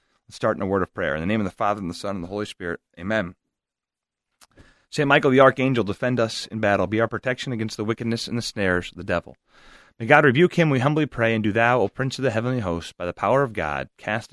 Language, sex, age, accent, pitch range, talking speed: English, male, 30-49, American, 105-145 Hz, 265 wpm